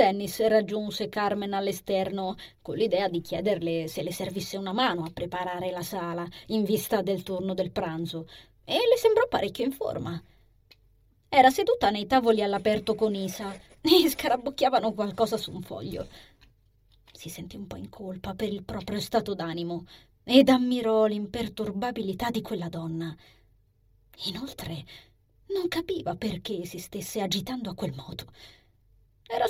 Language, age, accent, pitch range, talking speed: Italian, 20-39, native, 160-220 Hz, 140 wpm